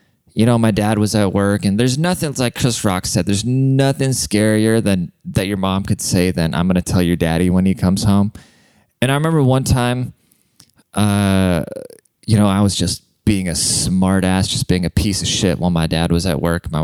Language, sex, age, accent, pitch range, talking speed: English, male, 20-39, American, 85-110 Hz, 220 wpm